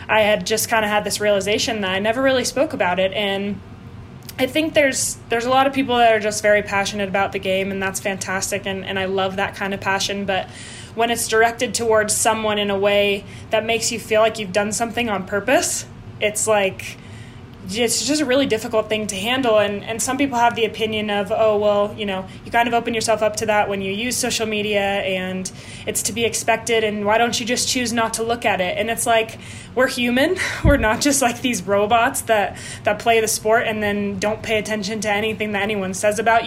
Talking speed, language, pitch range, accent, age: 230 wpm, English, 200-230 Hz, American, 20-39